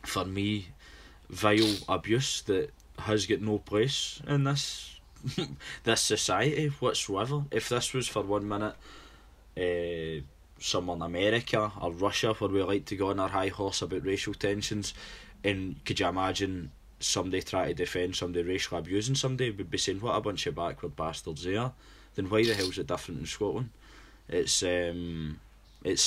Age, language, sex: 20-39, English, male